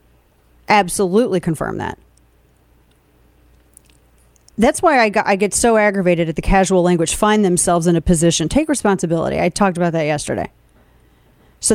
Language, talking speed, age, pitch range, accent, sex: English, 140 wpm, 40-59, 170-230 Hz, American, female